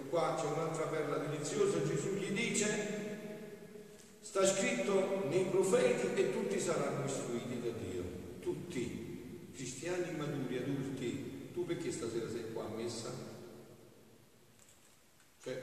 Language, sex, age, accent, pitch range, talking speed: Italian, male, 50-69, native, 120-160 Hz, 115 wpm